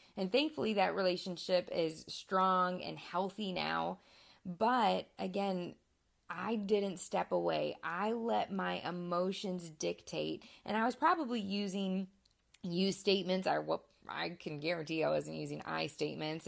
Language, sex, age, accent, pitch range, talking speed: English, female, 20-39, American, 160-200 Hz, 130 wpm